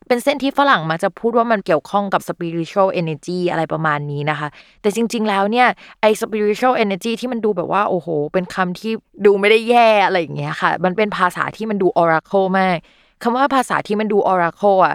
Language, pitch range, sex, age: Thai, 170-215 Hz, female, 20-39